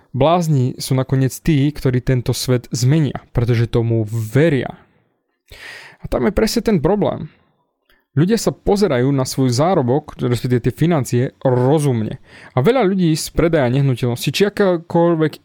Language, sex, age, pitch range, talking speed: Slovak, male, 30-49, 125-170 Hz, 145 wpm